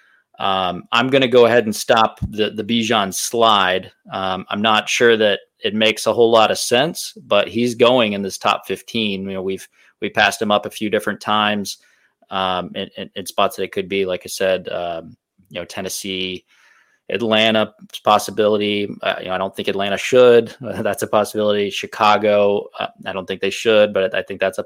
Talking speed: 200 wpm